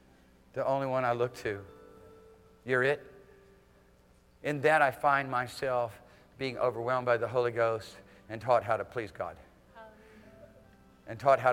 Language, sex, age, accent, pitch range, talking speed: English, male, 50-69, American, 115-145 Hz, 145 wpm